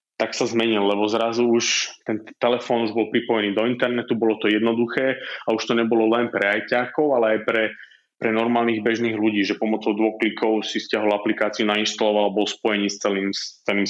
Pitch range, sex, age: 105-115 Hz, male, 20-39